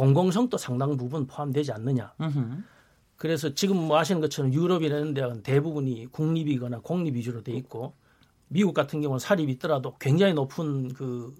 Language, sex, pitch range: Korean, male, 130-165 Hz